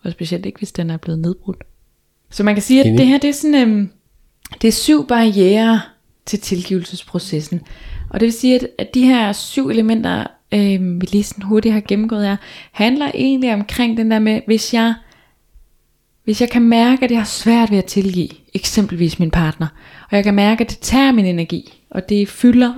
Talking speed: 200 wpm